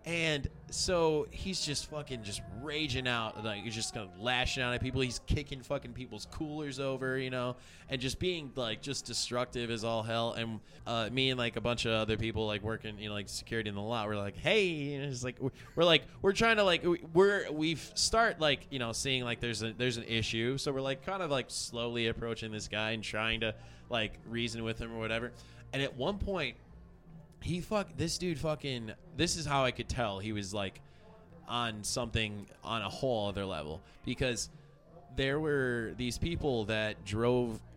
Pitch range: 110-140 Hz